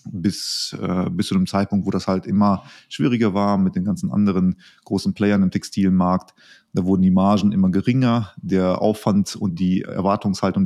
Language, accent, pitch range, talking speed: German, German, 95-115 Hz, 175 wpm